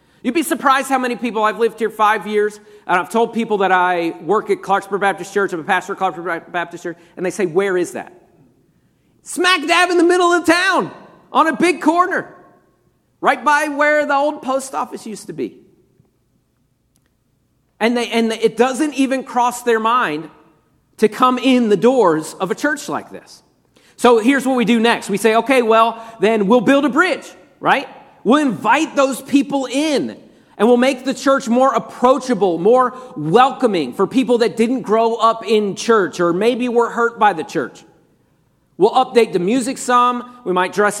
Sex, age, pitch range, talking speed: male, 40-59, 210-265 Hz, 190 wpm